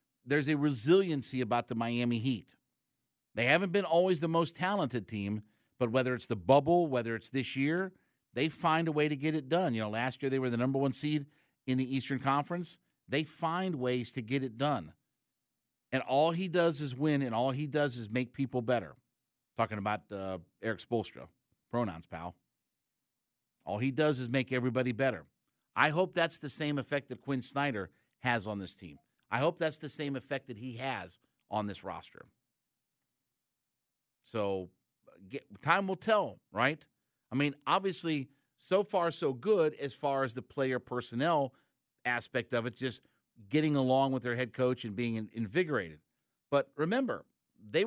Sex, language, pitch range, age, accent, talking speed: male, English, 120-155 Hz, 50-69, American, 175 wpm